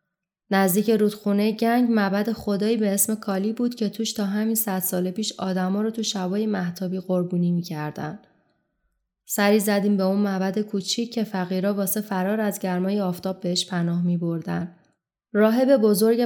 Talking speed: 160 wpm